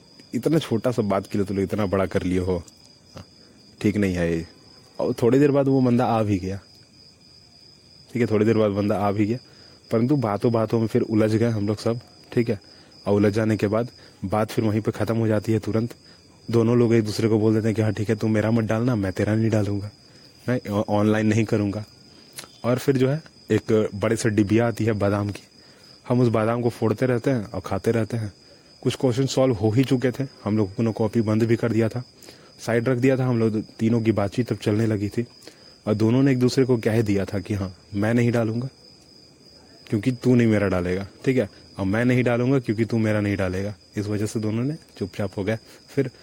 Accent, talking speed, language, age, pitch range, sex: native, 230 wpm, Hindi, 30-49, 105-120 Hz, male